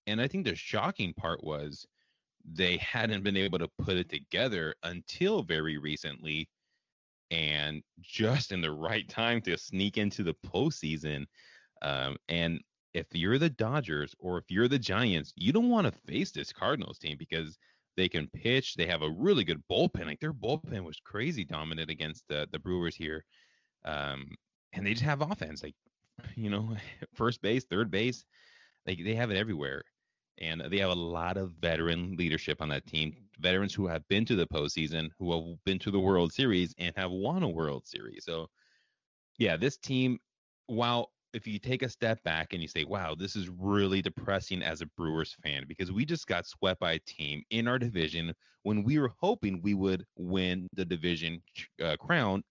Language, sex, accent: English, male, American